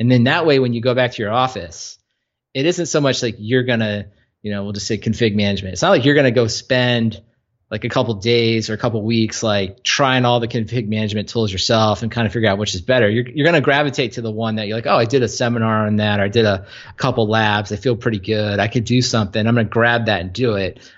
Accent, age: American, 30-49